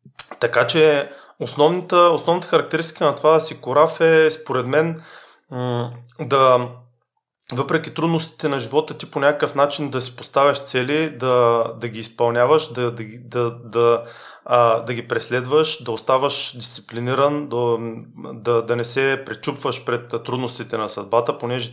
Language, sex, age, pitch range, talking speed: Bulgarian, male, 30-49, 120-150 Hz, 145 wpm